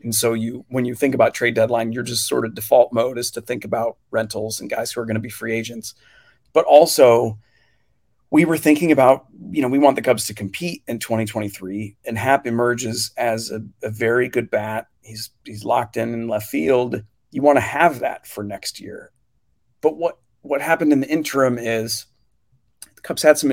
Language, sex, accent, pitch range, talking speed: English, male, American, 110-125 Hz, 205 wpm